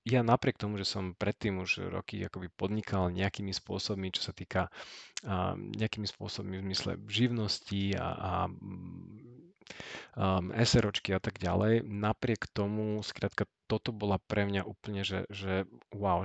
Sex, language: male, Slovak